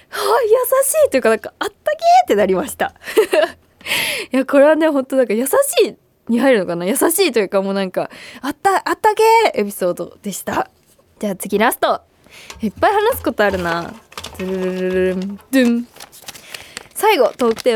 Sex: female